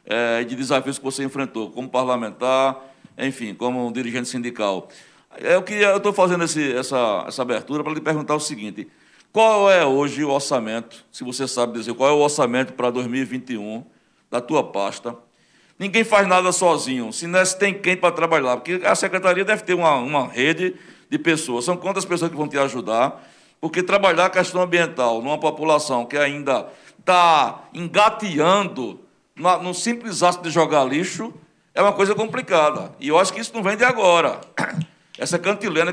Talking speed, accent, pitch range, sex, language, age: 165 wpm, Brazilian, 135-180 Hz, male, Portuguese, 60-79